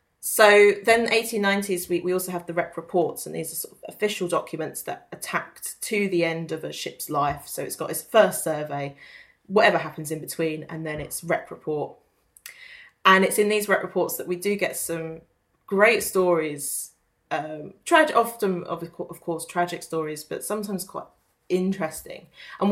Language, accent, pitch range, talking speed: English, British, 165-195 Hz, 175 wpm